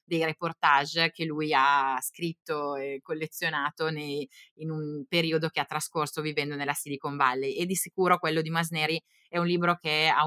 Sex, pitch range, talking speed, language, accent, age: female, 155-195 Hz, 170 wpm, Italian, native, 20-39